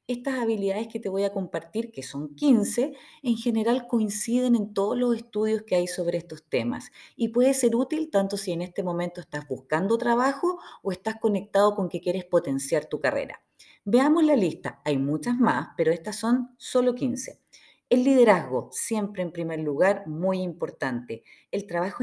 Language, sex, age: Spanish, female, 30-49